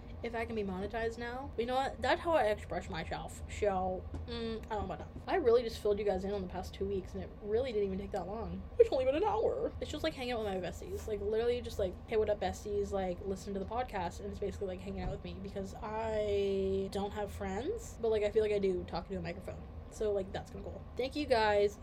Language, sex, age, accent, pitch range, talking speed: English, female, 10-29, American, 195-240 Hz, 270 wpm